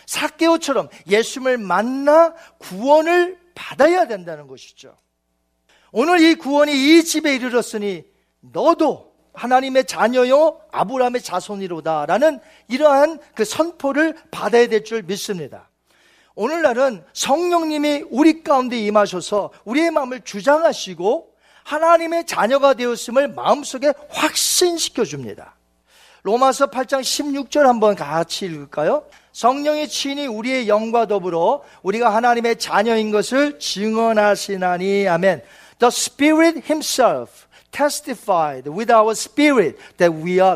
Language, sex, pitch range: Korean, male, 205-300 Hz